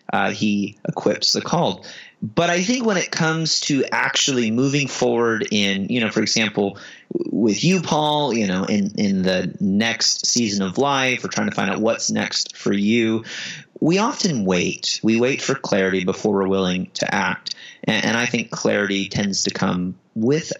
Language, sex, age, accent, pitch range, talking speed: English, male, 30-49, American, 100-135 Hz, 180 wpm